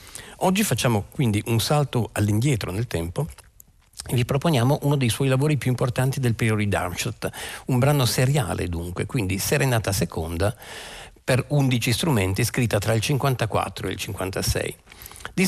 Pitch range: 100-130 Hz